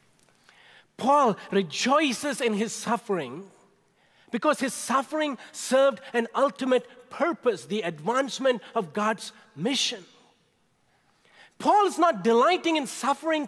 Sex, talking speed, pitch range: male, 100 wpm, 195-275 Hz